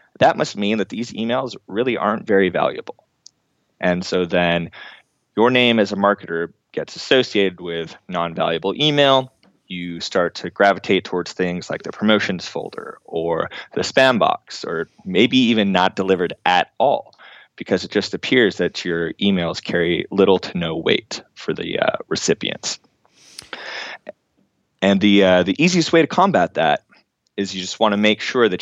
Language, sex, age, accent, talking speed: English, male, 20-39, American, 160 wpm